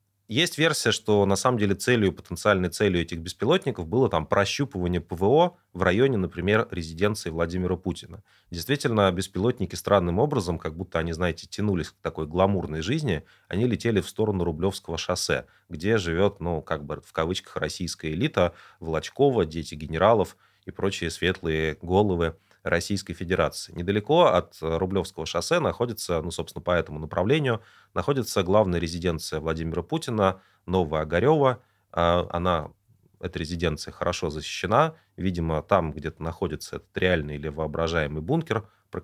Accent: native